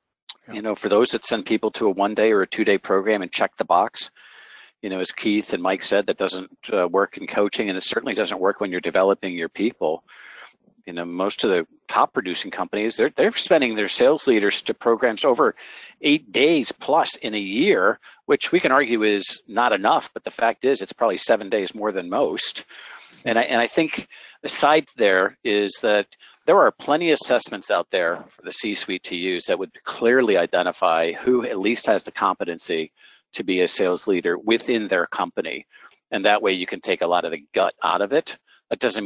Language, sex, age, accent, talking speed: English, male, 50-69, American, 210 wpm